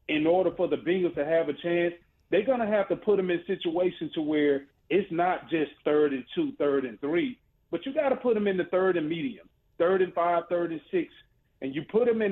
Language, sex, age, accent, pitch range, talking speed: English, male, 40-59, American, 155-205 Hz, 250 wpm